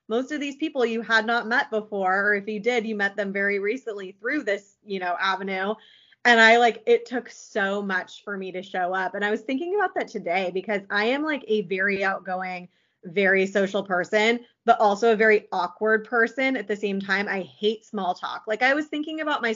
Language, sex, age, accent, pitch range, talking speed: English, female, 20-39, American, 200-235 Hz, 220 wpm